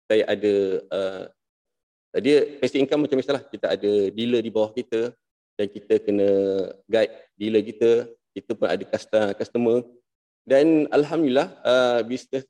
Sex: male